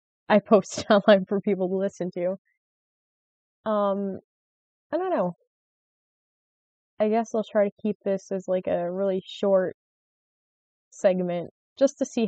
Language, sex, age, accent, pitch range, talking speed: English, female, 20-39, American, 185-210 Hz, 140 wpm